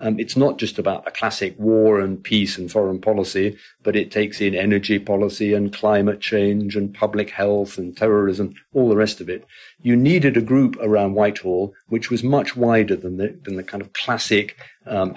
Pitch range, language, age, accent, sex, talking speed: 100-130 Hz, English, 50-69, British, male, 195 wpm